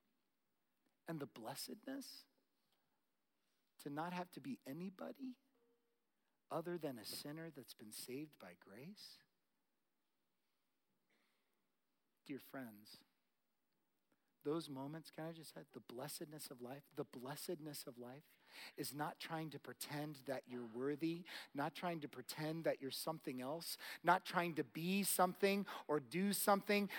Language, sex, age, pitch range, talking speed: English, male, 40-59, 135-205 Hz, 130 wpm